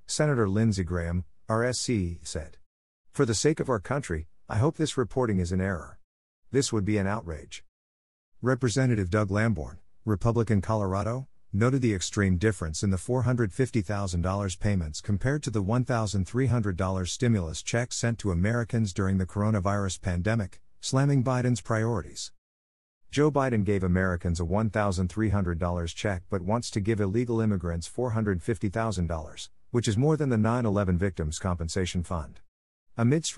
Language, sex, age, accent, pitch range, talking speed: English, male, 50-69, American, 90-115 Hz, 135 wpm